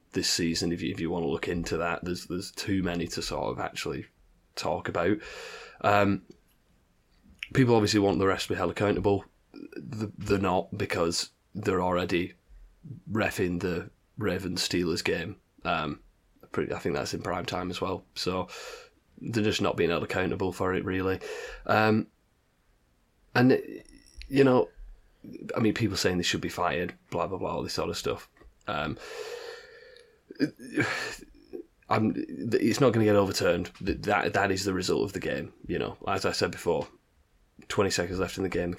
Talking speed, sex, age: 165 wpm, male, 20-39